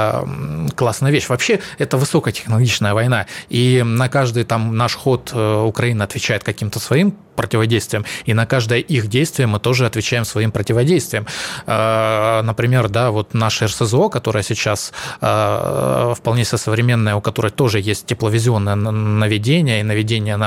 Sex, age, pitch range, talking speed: male, 20-39, 105-120 Hz, 135 wpm